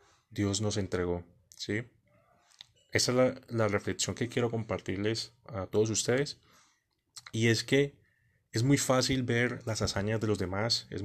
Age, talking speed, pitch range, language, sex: 30-49, 150 wpm, 100-120 Hz, Spanish, male